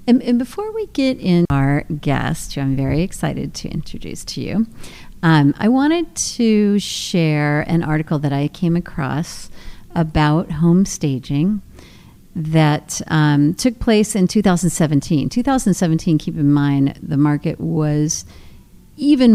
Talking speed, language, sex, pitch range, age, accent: 135 wpm, English, female, 140-175 Hz, 50-69, American